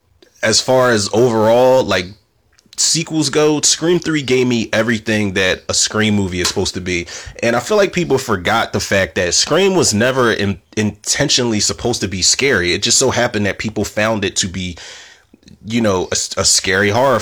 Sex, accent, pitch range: male, American, 100-125 Hz